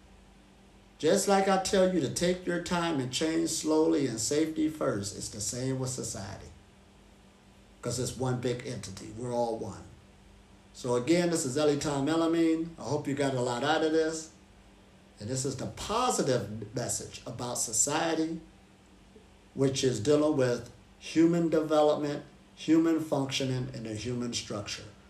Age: 50-69